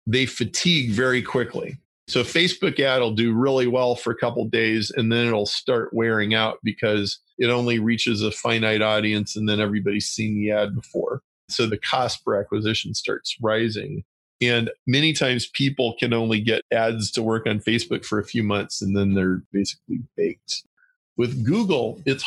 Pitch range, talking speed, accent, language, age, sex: 110-130 Hz, 185 wpm, American, English, 40-59, male